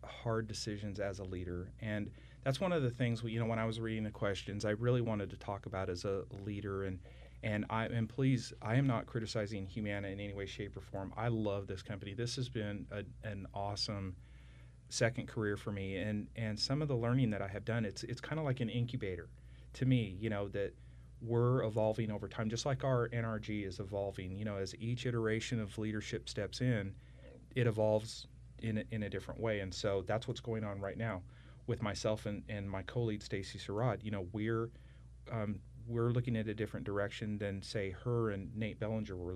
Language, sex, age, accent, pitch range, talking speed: English, male, 40-59, American, 95-120 Hz, 215 wpm